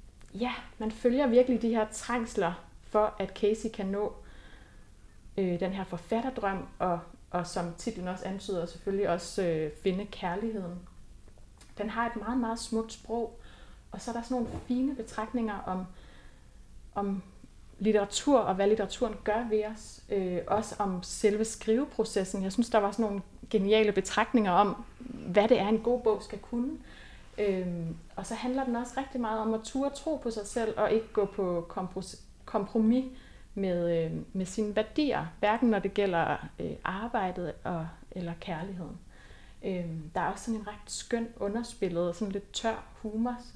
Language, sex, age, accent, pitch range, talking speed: Danish, female, 30-49, native, 180-225 Hz, 165 wpm